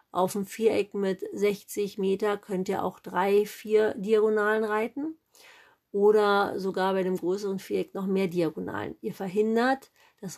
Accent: German